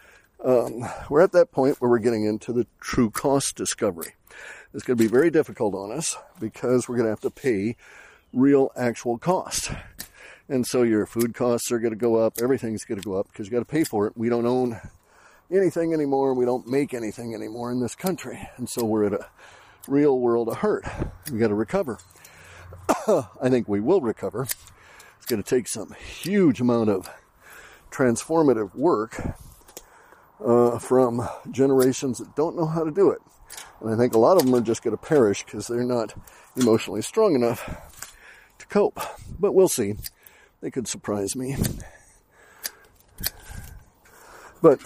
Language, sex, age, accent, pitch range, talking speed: English, male, 50-69, American, 110-135 Hz, 175 wpm